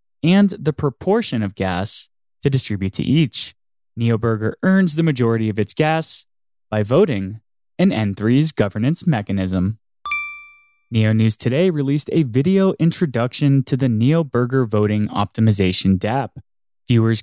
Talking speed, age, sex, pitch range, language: 125 wpm, 20-39, male, 105-160 Hz, English